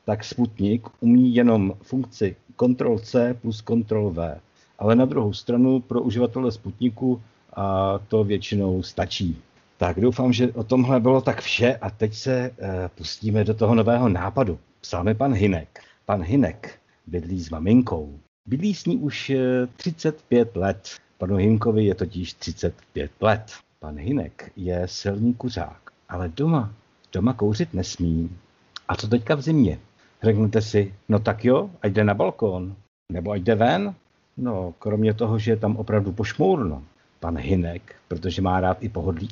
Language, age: Czech, 60-79